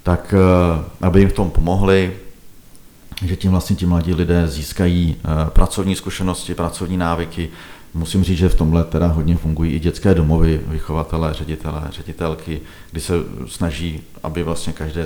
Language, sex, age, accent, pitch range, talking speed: Czech, male, 40-59, native, 80-95 Hz, 145 wpm